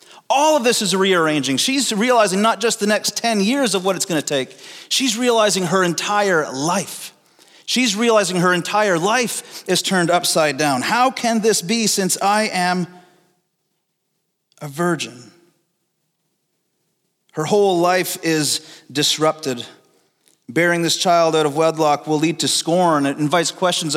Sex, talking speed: male, 150 wpm